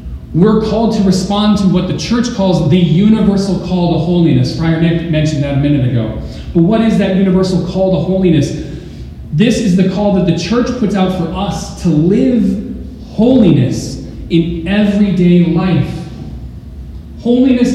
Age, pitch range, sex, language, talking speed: 30-49, 145-195 Hz, male, English, 160 wpm